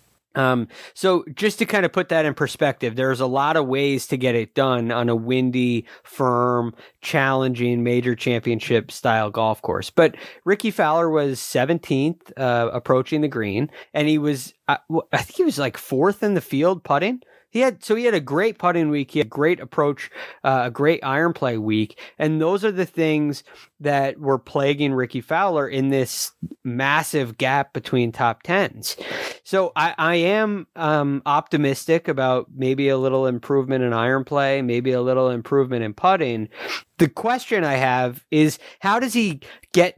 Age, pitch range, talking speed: 30-49, 125-160 Hz, 175 wpm